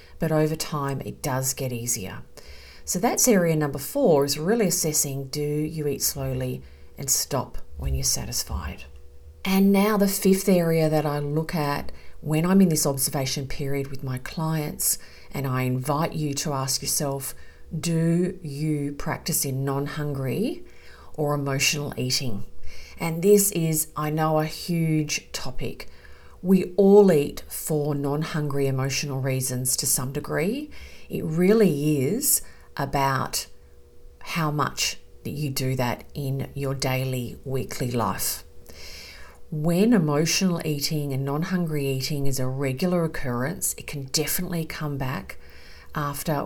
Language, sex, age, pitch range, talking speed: English, female, 40-59, 125-155 Hz, 135 wpm